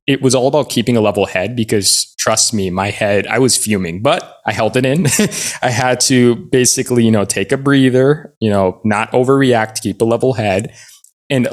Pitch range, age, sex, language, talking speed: 105-125 Hz, 20-39, male, English, 205 wpm